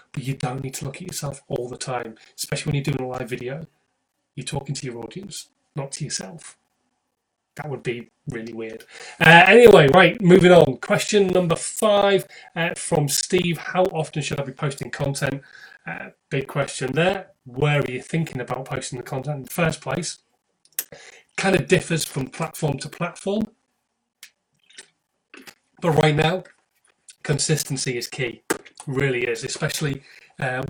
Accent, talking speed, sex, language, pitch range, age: British, 160 wpm, male, English, 130-165 Hz, 20-39